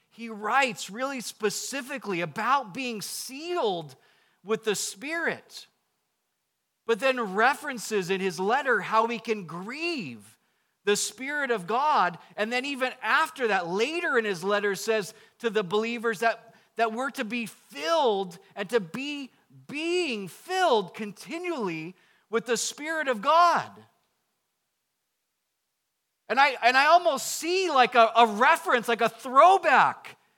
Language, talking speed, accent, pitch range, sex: English, 130 wpm, American, 215-290 Hz, male